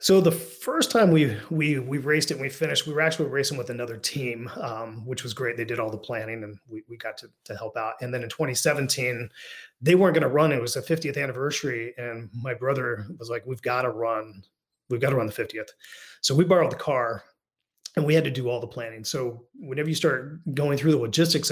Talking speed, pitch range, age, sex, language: 240 wpm, 120-150 Hz, 30-49, male, English